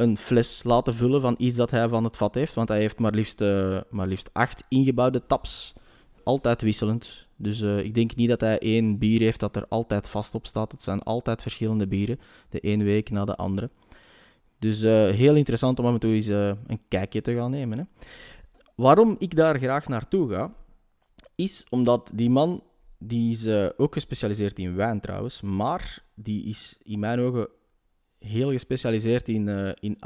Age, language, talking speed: 20-39, Dutch, 190 wpm